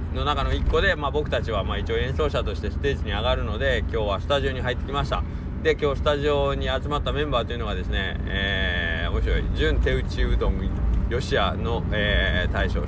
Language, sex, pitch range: Japanese, male, 75-110 Hz